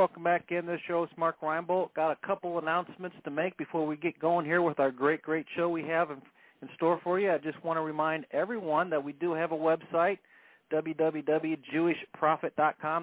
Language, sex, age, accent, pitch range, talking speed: English, male, 40-59, American, 140-165 Hz, 200 wpm